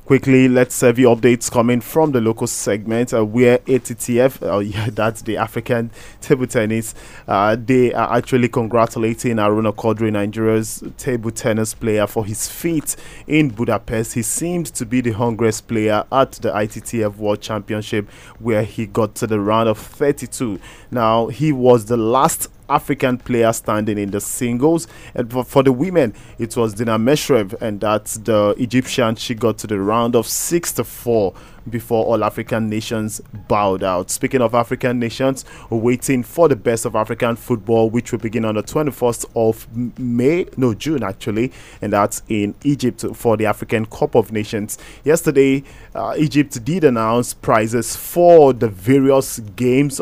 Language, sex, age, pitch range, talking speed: English, male, 20-39, 110-125 Hz, 165 wpm